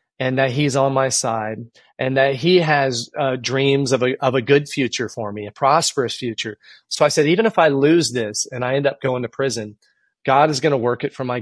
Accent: American